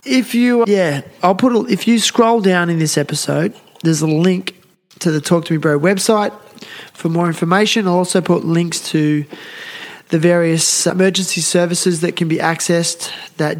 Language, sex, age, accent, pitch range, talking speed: English, male, 20-39, Australian, 145-180 Hz, 175 wpm